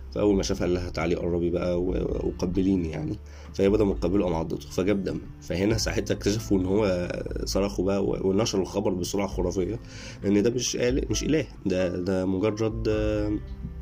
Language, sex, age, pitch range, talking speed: Arabic, male, 20-39, 90-105 Hz, 155 wpm